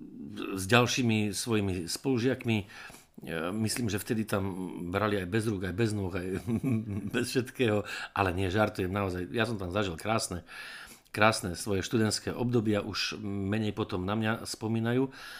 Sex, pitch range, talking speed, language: male, 90-120 Hz, 145 wpm, Slovak